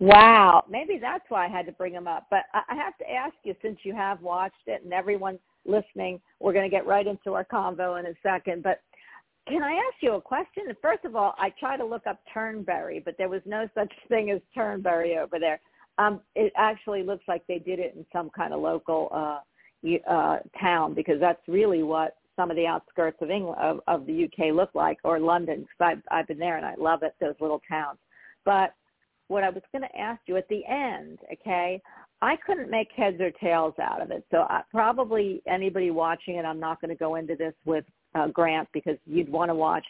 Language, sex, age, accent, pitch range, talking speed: English, female, 50-69, American, 170-215 Hz, 225 wpm